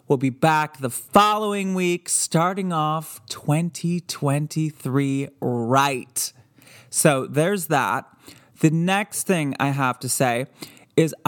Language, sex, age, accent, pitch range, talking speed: English, male, 20-39, American, 135-170 Hz, 110 wpm